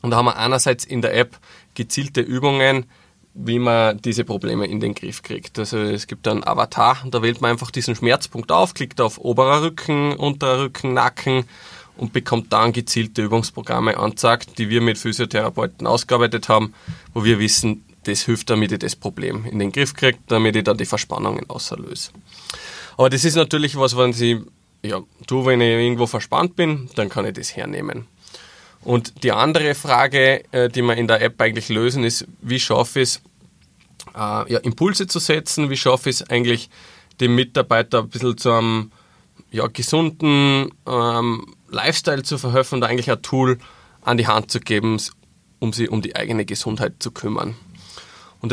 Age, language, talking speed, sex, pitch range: 20-39, German, 175 wpm, male, 115-135 Hz